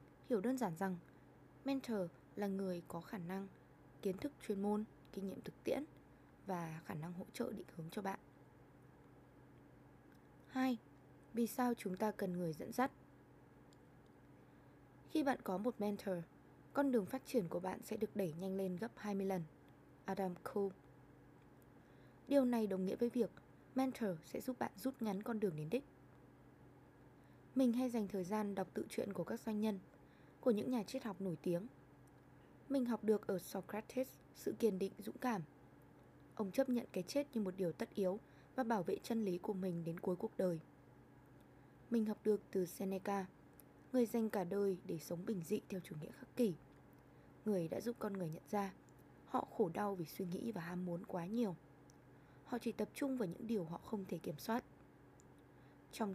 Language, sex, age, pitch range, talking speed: Vietnamese, female, 20-39, 150-220 Hz, 185 wpm